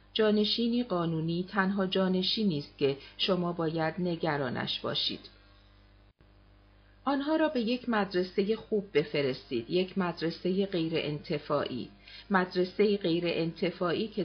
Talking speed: 100 wpm